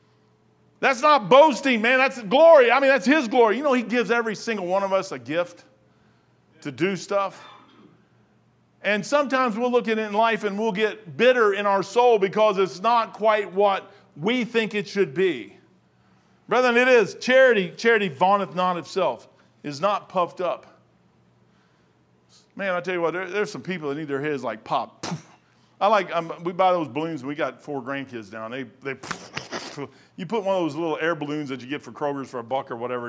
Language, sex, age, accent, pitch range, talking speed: English, male, 50-69, American, 145-225 Hz, 200 wpm